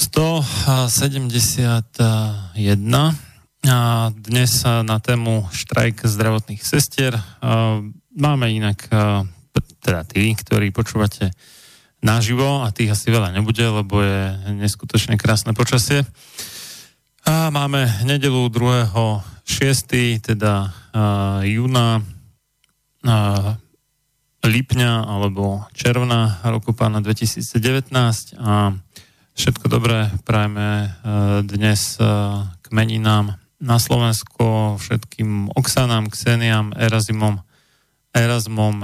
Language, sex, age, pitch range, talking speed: Slovak, male, 30-49, 105-125 Hz, 75 wpm